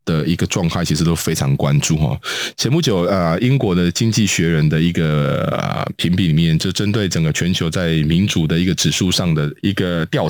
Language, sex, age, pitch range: Chinese, male, 20-39, 85-105 Hz